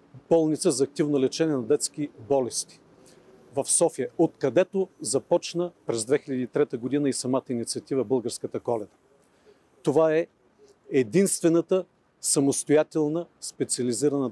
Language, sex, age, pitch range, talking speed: Bulgarian, male, 50-69, 130-155 Hz, 100 wpm